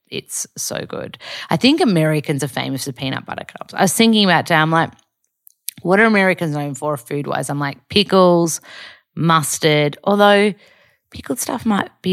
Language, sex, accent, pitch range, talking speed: English, female, Australian, 150-185 Hz, 170 wpm